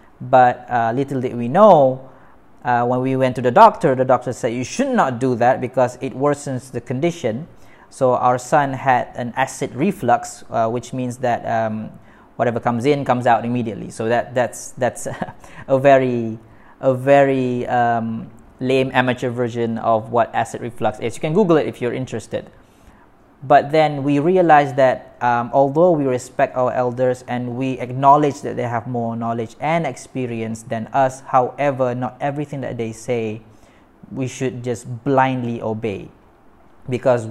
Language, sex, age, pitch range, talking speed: Malay, male, 20-39, 120-135 Hz, 165 wpm